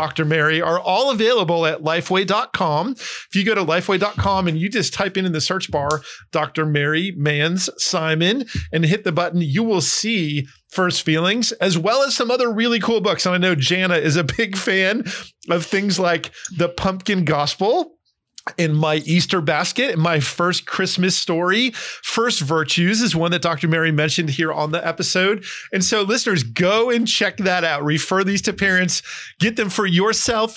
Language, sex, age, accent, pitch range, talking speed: English, male, 40-59, American, 160-205 Hz, 185 wpm